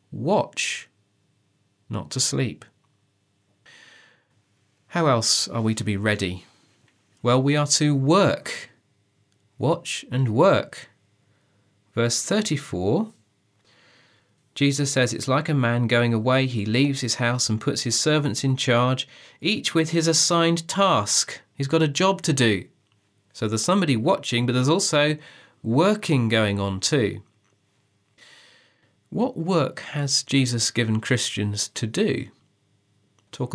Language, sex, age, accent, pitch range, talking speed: English, male, 30-49, British, 105-145 Hz, 125 wpm